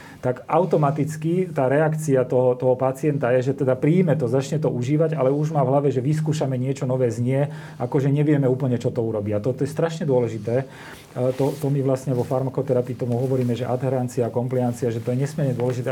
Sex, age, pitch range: male, 40-59, 120-140 Hz